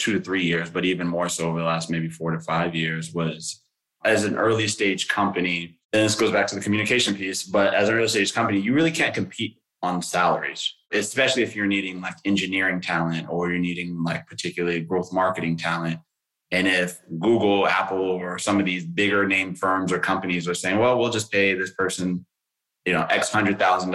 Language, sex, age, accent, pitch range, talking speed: English, male, 20-39, American, 85-100 Hz, 210 wpm